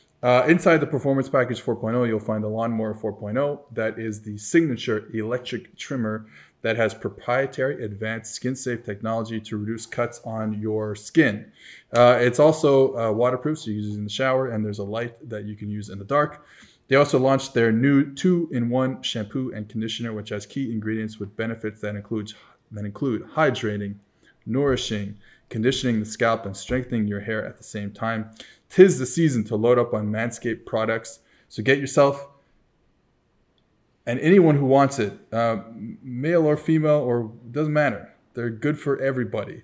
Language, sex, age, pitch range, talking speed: English, male, 20-39, 110-130 Hz, 170 wpm